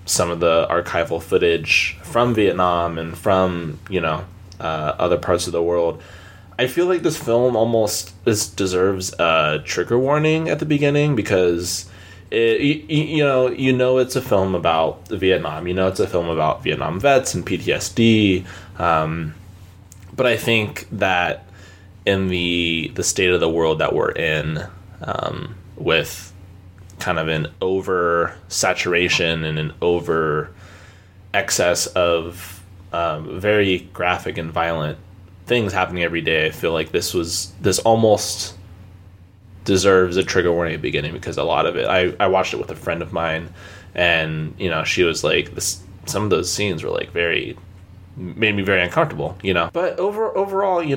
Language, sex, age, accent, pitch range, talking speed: English, male, 20-39, American, 85-110 Hz, 165 wpm